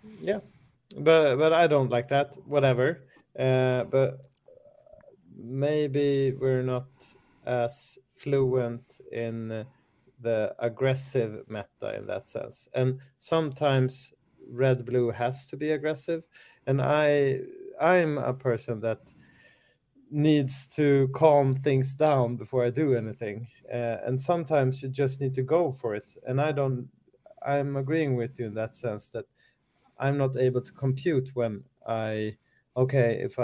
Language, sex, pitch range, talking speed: English, male, 120-140 Hz, 135 wpm